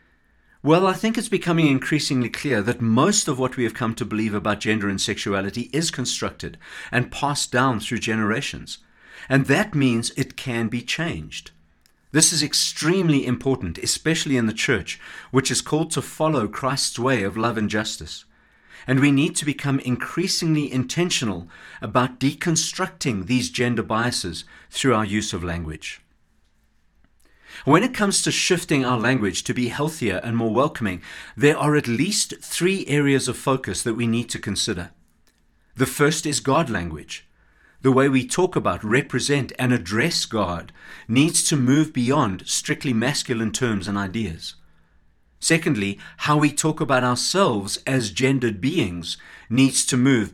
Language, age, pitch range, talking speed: English, 50-69, 105-145 Hz, 155 wpm